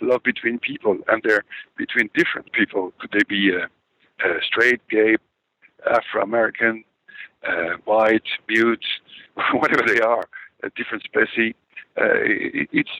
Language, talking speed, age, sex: English, 120 wpm, 60-79, male